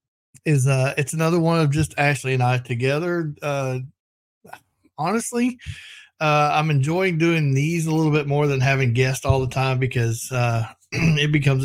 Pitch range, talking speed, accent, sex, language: 120-145 Hz, 165 wpm, American, male, English